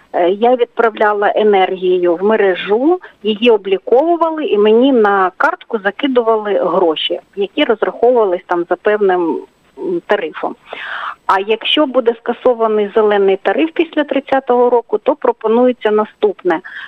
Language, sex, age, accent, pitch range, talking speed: Ukrainian, female, 40-59, native, 215-305 Hz, 110 wpm